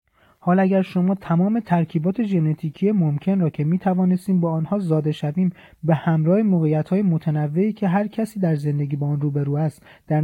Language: Persian